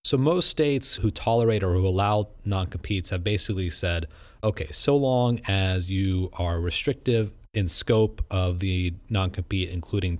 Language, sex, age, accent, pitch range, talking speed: English, male, 30-49, American, 95-115 Hz, 145 wpm